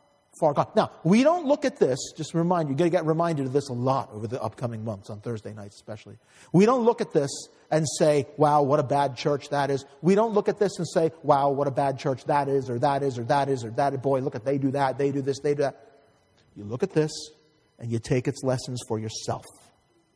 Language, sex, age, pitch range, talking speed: English, male, 40-59, 130-170 Hz, 255 wpm